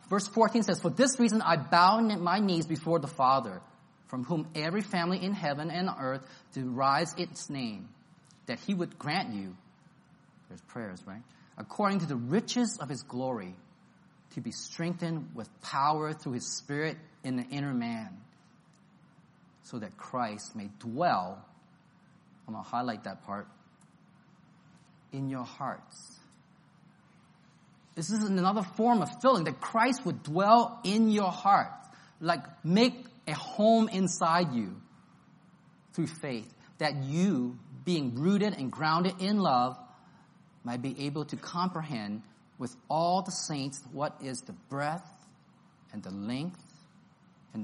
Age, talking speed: 30-49, 140 wpm